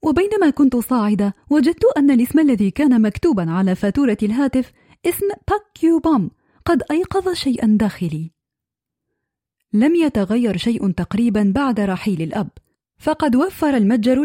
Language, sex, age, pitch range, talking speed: Arabic, female, 30-49, 195-265 Hz, 120 wpm